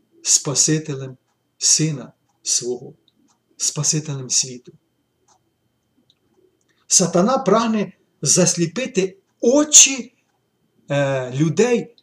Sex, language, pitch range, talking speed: male, Ukrainian, 140-200 Hz, 50 wpm